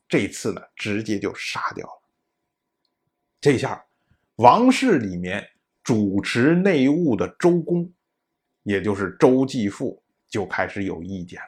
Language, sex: Chinese, male